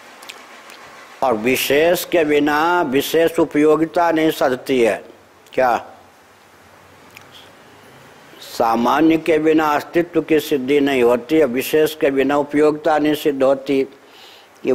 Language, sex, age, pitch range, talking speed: Hindi, male, 60-79, 130-155 Hz, 110 wpm